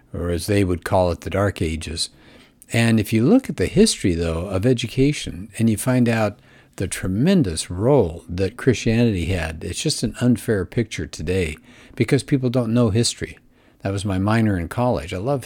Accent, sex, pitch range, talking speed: American, male, 90-120 Hz, 185 wpm